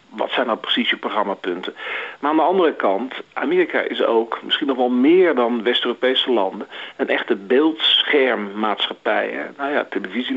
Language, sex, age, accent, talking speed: Dutch, male, 50-69, Dutch, 155 wpm